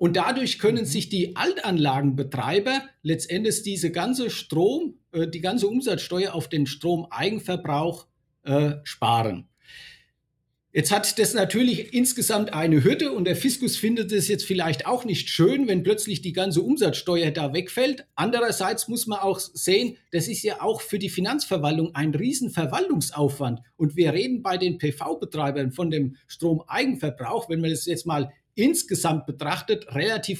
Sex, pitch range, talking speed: male, 155-215 Hz, 145 wpm